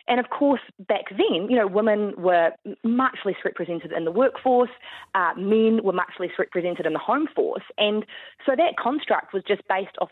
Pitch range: 185-255 Hz